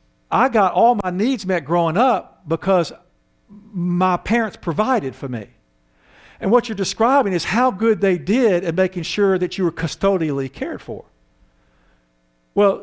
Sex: male